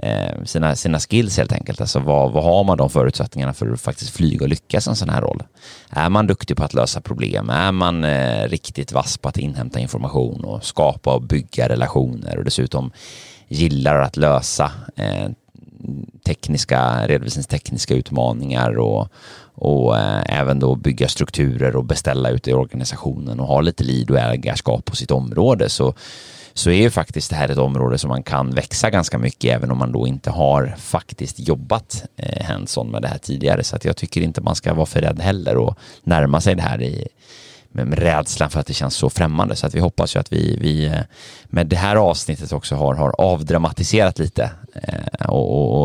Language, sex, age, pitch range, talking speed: Swedish, male, 30-49, 65-90 Hz, 185 wpm